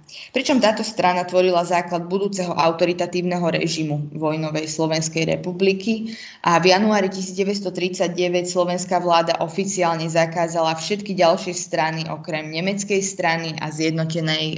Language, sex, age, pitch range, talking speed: Slovak, female, 20-39, 160-180 Hz, 110 wpm